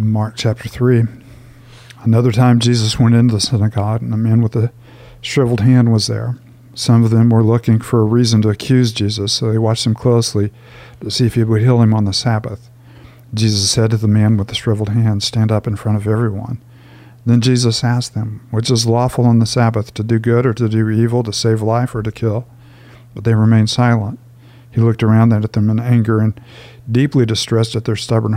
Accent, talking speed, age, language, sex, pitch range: American, 210 wpm, 50-69, English, male, 110-120 Hz